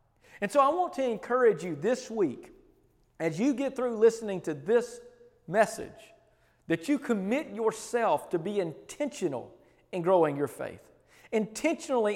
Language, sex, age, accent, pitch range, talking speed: English, male, 40-59, American, 175-255 Hz, 145 wpm